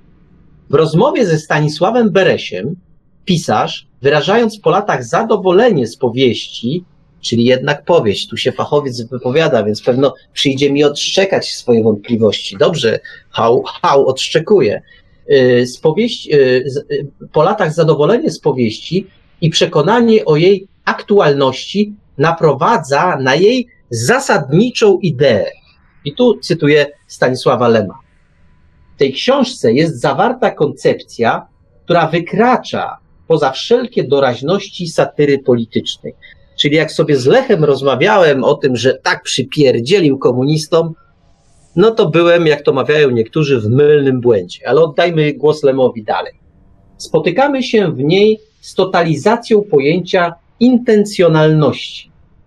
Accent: native